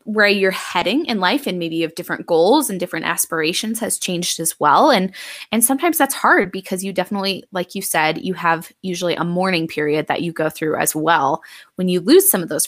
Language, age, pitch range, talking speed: English, 20-39, 165-210 Hz, 220 wpm